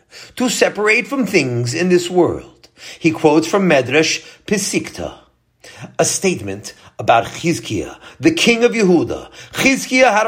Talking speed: 130 wpm